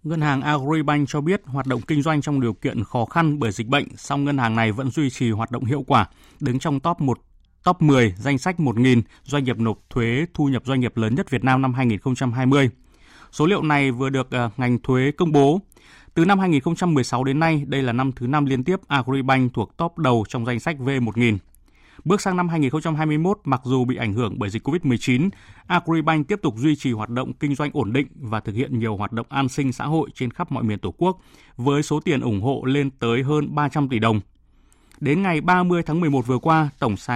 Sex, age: male, 20-39